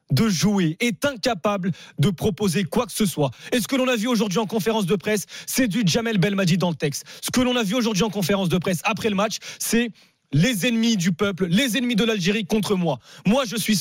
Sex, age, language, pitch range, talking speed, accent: male, 30-49, French, 180-220 Hz, 240 wpm, French